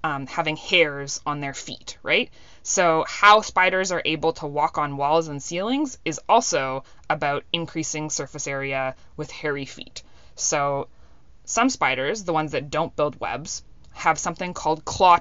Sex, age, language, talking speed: female, 20-39, English, 160 wpm